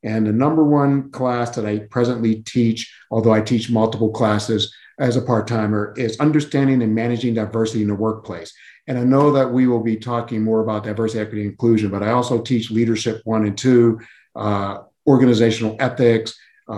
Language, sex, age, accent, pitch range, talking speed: English, male, 50-69, American, 110-130 Hz, 180 wpm